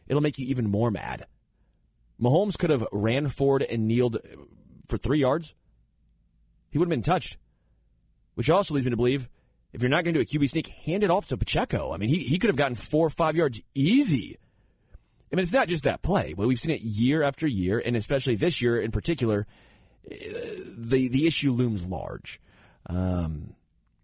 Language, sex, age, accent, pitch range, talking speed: English, male, 30-49, American, 105-145 Hz, 195 wpm